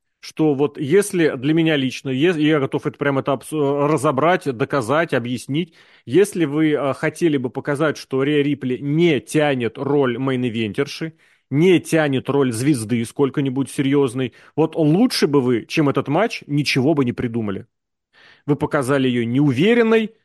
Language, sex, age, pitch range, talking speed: Russian, male, 30-49, 130-165 Hz, 140 wpm